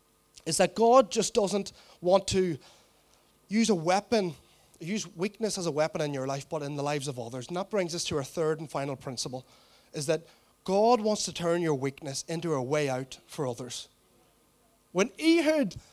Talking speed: 190 wpm